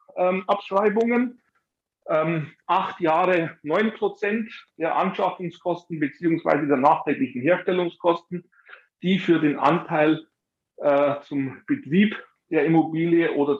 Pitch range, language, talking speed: 145-200 Hz, German, 95 wpm